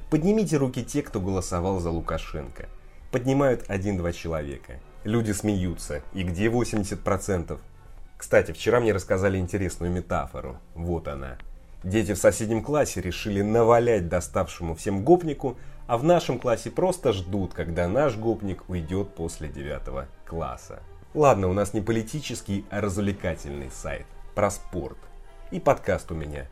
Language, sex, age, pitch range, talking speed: Russian, male, 30-49, 85-115 Hz, 135 wpm